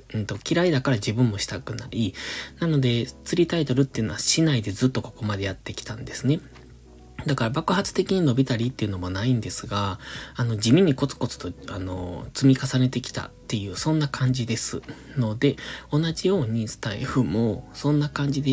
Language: Japanese